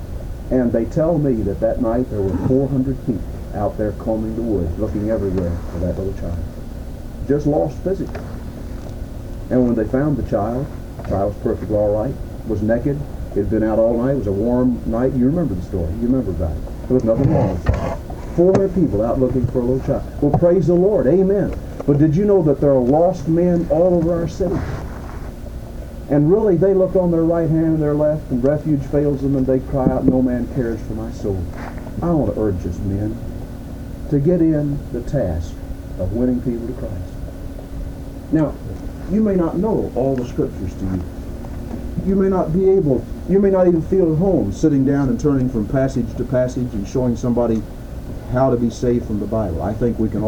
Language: English